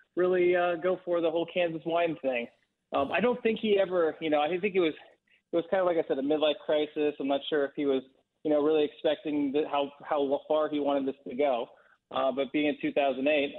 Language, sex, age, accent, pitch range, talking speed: English, male, 20-39, American, 140-165 Hz, 245 wpm